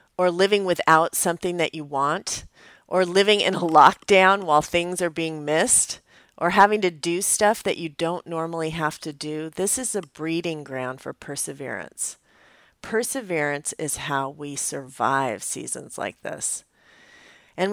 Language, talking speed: English, 150 wpm